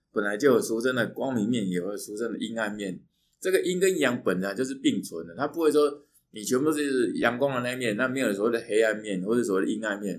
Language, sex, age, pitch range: Chinese, male, 20-39, 105-170 Hz